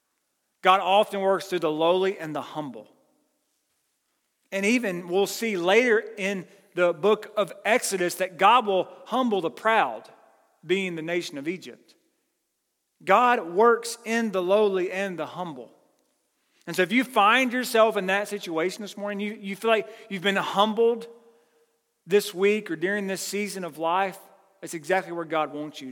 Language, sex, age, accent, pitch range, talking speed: English, male, 40-59, American, 155-210 Hz, 160 wpm